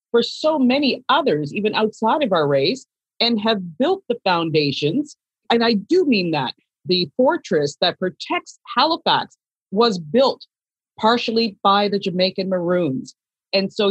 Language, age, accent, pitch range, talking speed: English, 40-59, American, 185-240 Hz, 140 wpm